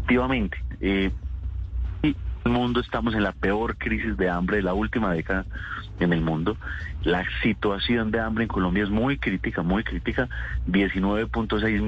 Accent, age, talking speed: Colombian, 30-49, 155 wpm